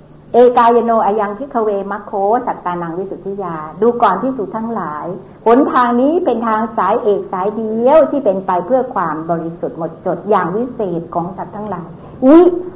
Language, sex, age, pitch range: Thai, female, 60-79, 180-245 Hz